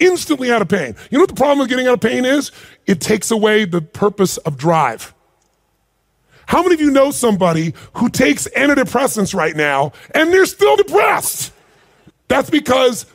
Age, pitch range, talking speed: 30-49, 200-265 Hz, 180 wpm